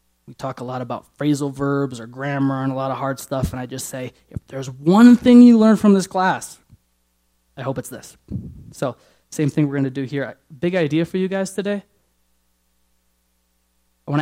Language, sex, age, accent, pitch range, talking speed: English, male, 20-39, American, 105-160 Hz, 200 wpm